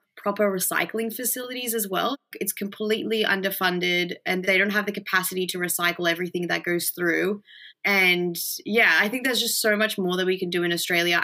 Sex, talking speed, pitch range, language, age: female, 185 wpm, 175-205 Hz, English, 20-39